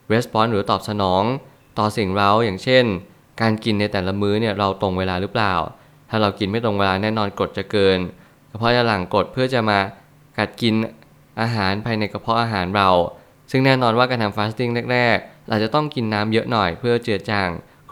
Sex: male